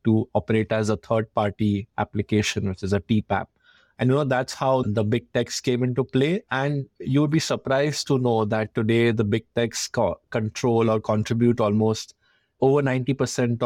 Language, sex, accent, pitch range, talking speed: English, male, Indian, 110-125 Hz, 180 wpm